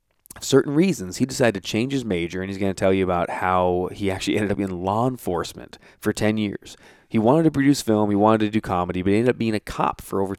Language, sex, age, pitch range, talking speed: English, male, 20-39, 90-110 Hz, 260 wpm